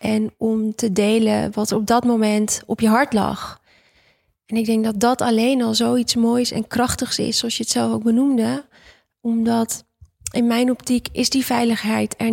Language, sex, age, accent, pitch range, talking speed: Dutch, female, 20-39, Dutch, 215-245 Hz, 185 wpm